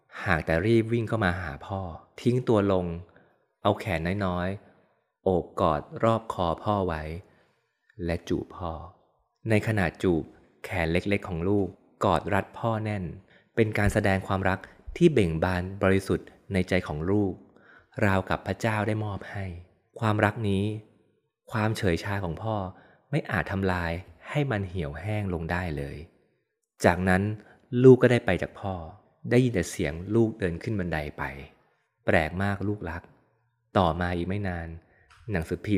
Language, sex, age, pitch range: Thai, male, 20-39, 90-110 Hz